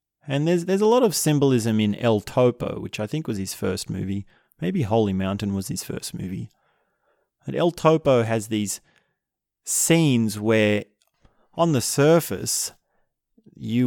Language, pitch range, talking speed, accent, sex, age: English, 100-120 Hz, 150 wpm, Australian, male, 30-49